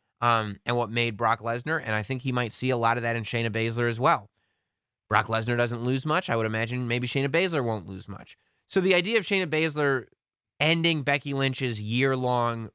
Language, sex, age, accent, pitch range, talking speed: English, male, 20-39, American, 110-145 Hz, 210 wpm